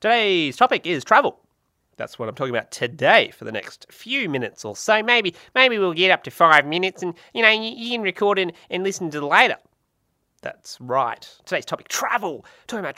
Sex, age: male, 20-39